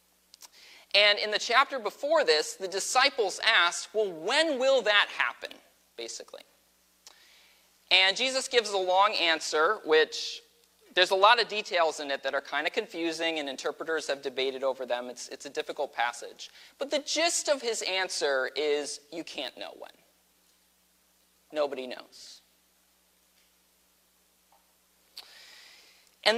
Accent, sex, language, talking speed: American, male, English, 135 wpm